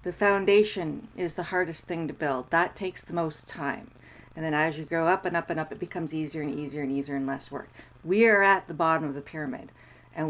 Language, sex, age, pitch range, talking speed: English, female, 40-59, 170-220 Hz, 245 wpm